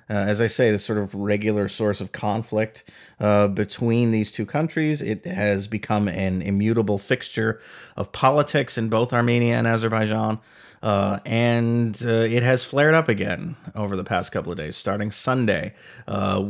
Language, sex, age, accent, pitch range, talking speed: English, male, 40-59, American, 100-120 Hz, 165 wpm